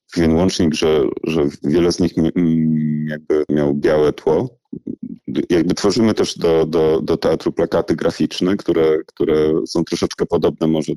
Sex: male